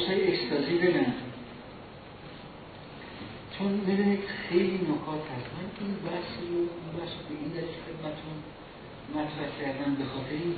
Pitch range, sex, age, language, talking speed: 140-195 Hz, male, 50-69, Persian, 110 wpm